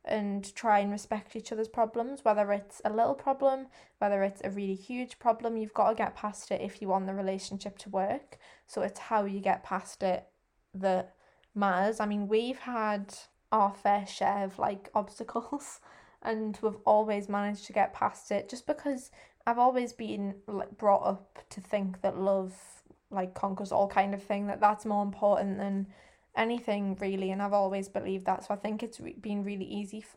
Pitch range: 195-215 Hz